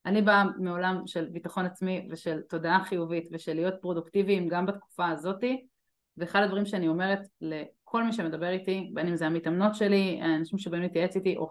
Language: Hebrew